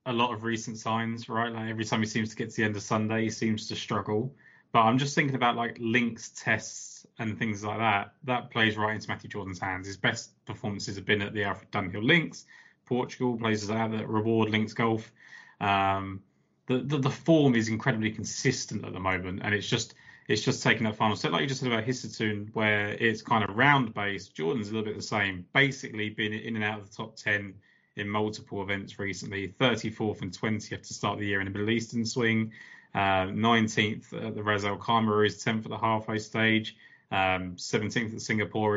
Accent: British